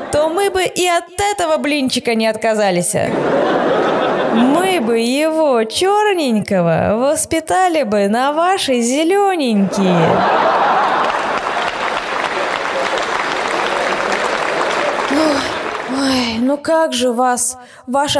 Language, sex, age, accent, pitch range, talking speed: Russian, female, 20-39, native, 220-320 Hz, 80 wpm